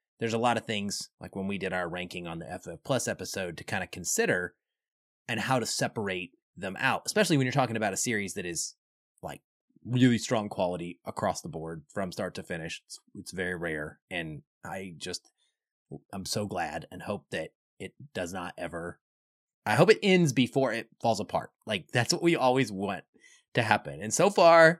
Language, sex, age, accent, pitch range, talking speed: English, male, 20-39, American, 100-135 Hz, 200 wpm